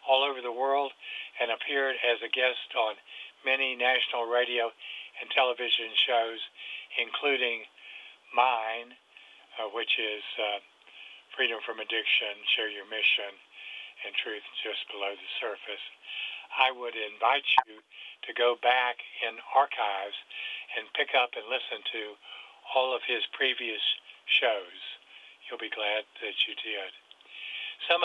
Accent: American